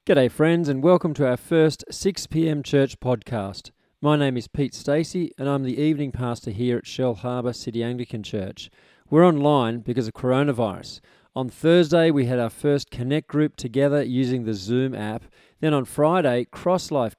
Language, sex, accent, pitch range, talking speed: English, male, Australian, 120-145 Hz, 180 wpm